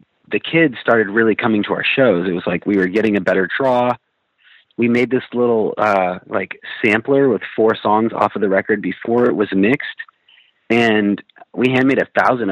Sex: male